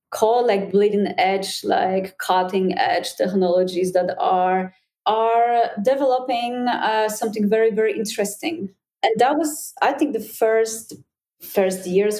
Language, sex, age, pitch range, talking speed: English, female, 30-49, 195-230 Hz, 130 wpm